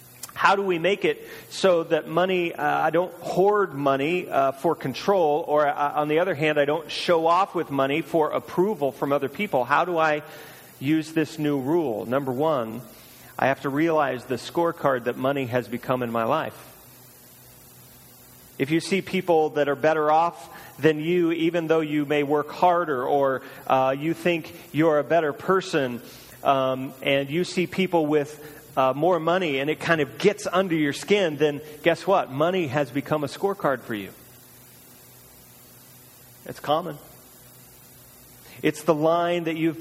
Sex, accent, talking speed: male, American, 170 wpm